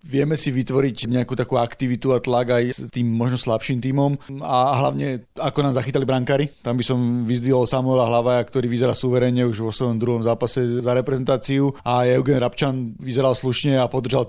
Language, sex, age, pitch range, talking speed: Slovak, male, 30-49, 120-135 Hz, 180 wpm